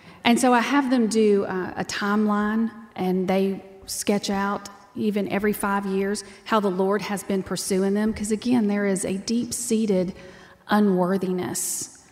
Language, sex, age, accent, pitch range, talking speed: English, female, 30-49, American, 195-245 Hz, 155 wpm